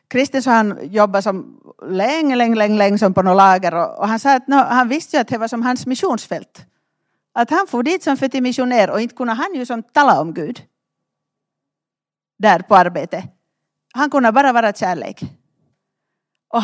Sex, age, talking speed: female, 40-59, 180 wpm